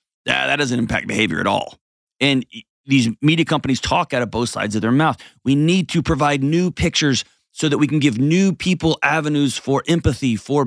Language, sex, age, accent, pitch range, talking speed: English, male, 30-49, American, 115-150 Hz, 200 wpm